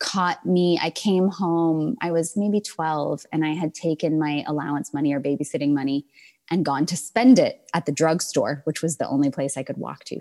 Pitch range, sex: 160-205 Hz, female